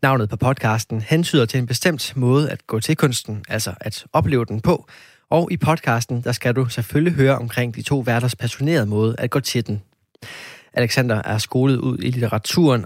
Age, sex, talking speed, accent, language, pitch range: 20-39, male, 190 wpm, native, Danish, 115-140 Hz